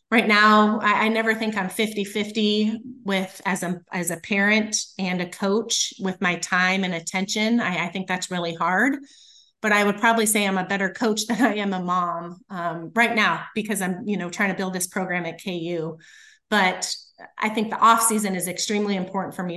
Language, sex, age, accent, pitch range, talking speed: English, female, 30-49, American, 175-205 Hz, 205 wpm